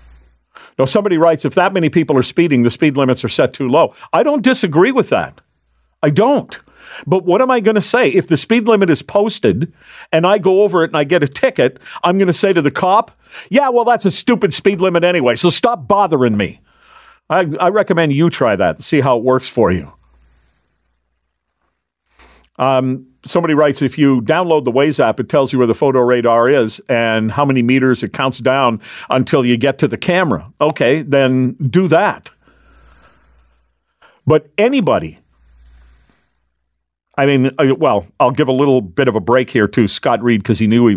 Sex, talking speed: male, 195 wpm